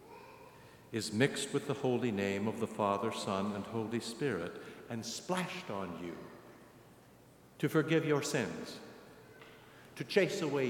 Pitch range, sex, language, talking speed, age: 105-145 Hz, male, English, 135 wpm, 60-79